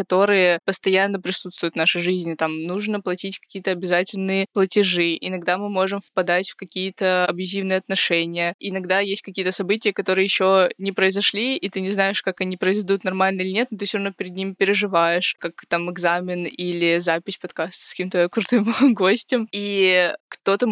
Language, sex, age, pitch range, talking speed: Russian, female, 20-39, 180-200 Hz, 165 wpm